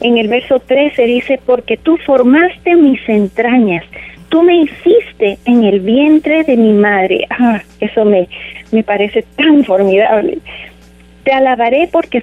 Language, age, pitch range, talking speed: Spanish, 40-59, 200-270 Hz, 140 wpm